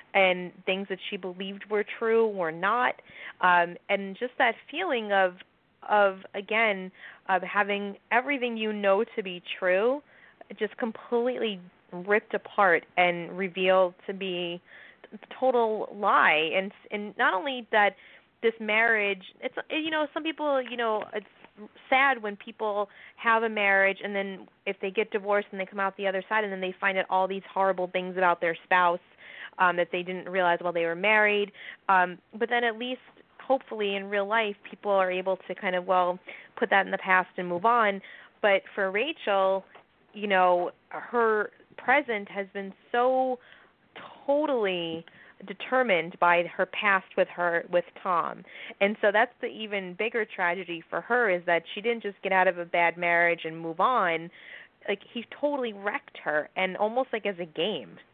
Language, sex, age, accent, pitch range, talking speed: English, female, 20-39, American, 185-225 Hz, 170 wpm